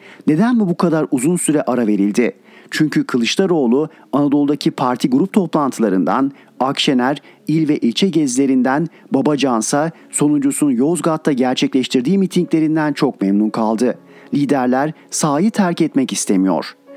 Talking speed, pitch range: 115 wpm, 130-180 Hz